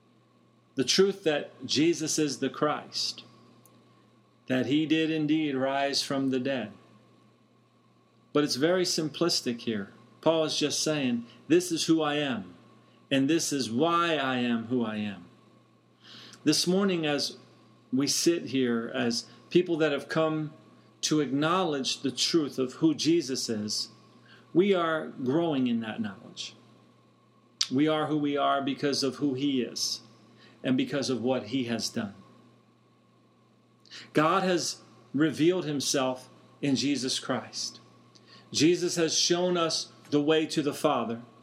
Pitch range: 120-155 Hz